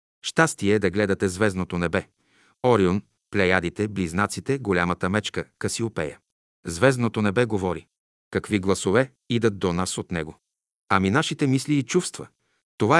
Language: Bulgarian